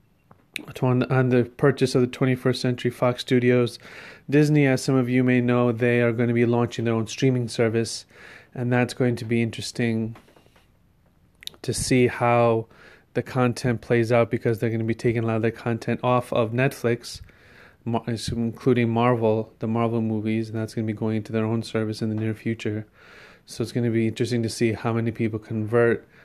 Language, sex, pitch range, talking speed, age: English, male, 115-125 Hz, 190 wpm, 30-49